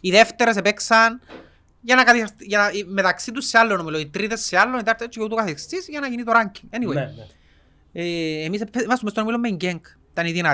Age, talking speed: 30-49, 170 wpm